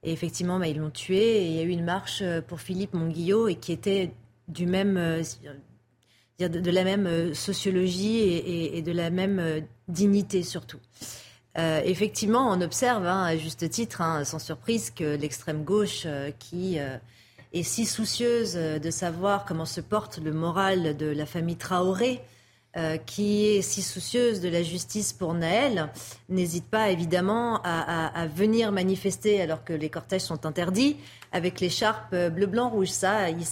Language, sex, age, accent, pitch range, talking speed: French, female, 30-49, French, 165-205 Hz, 170 wpm